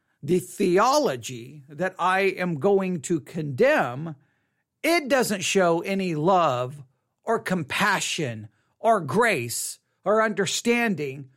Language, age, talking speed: English, 50-69, 100 wpm